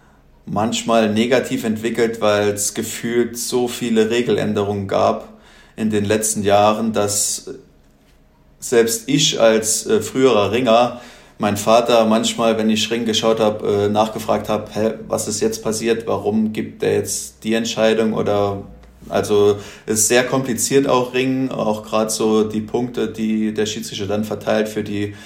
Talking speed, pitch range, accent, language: 145 wpm, 100-115 Hz, German, German